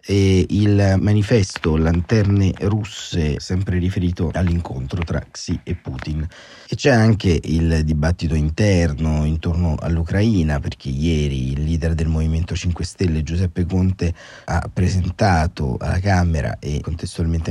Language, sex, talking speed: Italian, male, 125 wpm